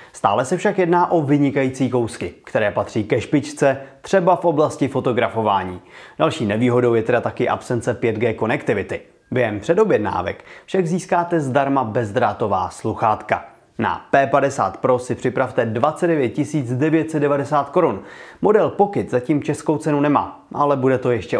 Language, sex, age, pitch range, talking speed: Czech, male, 30-49, 125-160 Hz, 135 wpm